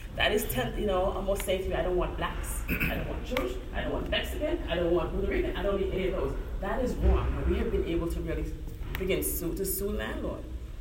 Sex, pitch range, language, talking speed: female, 170-220 Hz, English, 250 wpm